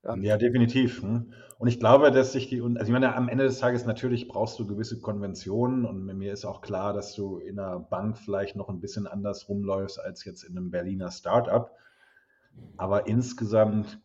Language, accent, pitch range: German, German, 100-120 Hz